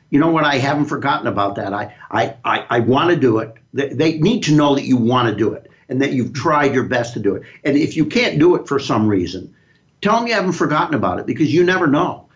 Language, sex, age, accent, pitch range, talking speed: English, male, 60-79, American, 120-160 Hz, 265 wpm